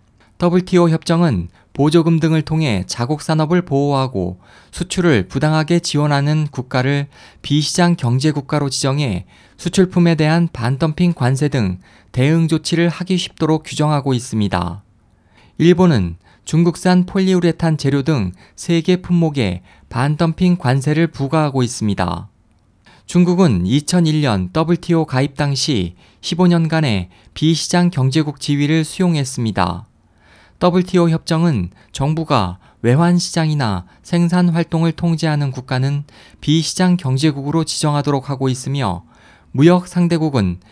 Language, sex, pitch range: Korean, male, 120-170 Hz